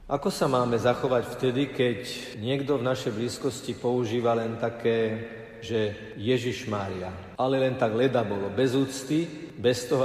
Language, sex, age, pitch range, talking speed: Slovak, male, 50-69, 110-135 Hz, 150 wpm